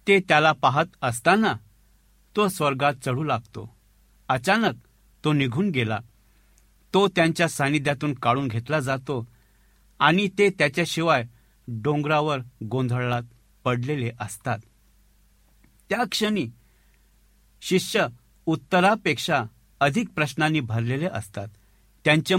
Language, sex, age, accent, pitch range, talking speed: Marathi, male, 60-79, native, 115-170 Hz, 90 wpm